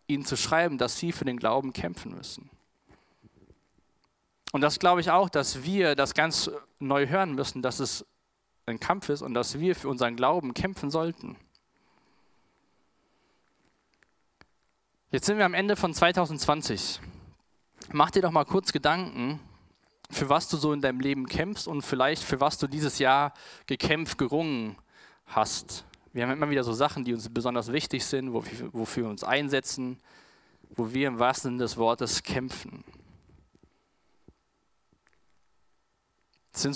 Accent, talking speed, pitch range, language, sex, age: German, 150 wpm, 120-155 Hz, German, male, 20-39